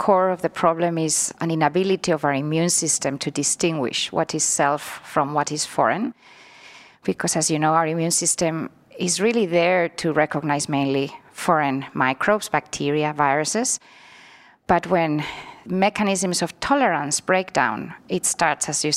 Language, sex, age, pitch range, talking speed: English, female, 30-49, 160-205 Hz, 150 wpm